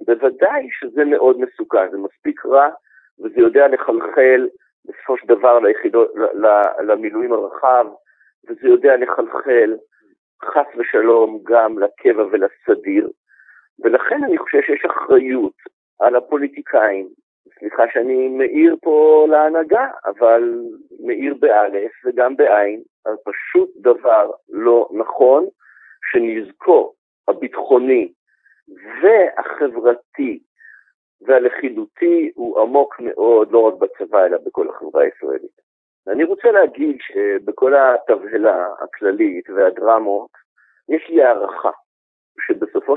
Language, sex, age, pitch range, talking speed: Hebrew, male, 50-69, 310-425 Hz, 100 wpm